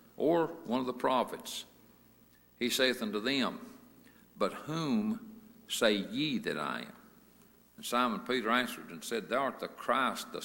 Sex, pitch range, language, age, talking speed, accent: male, 110-135 Hz, English, 60-79, 155 wpm, American